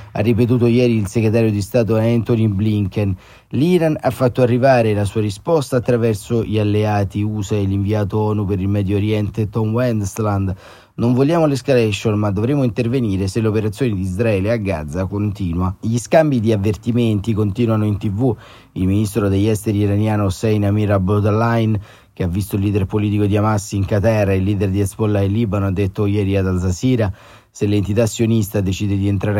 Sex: male